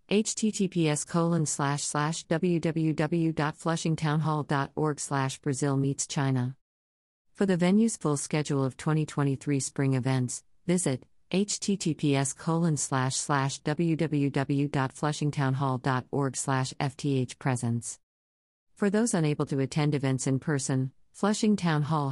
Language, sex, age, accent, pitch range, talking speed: English, female, 50-69, American, 130-160 Hz, 60 wpm